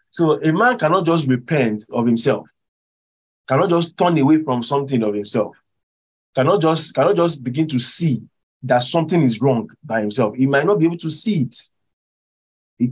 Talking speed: 175 wpm